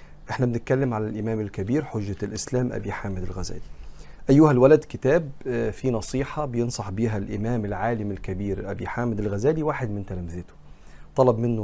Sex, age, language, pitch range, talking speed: male, 40-59, Arabic, 105-130 Hz, 145 wpm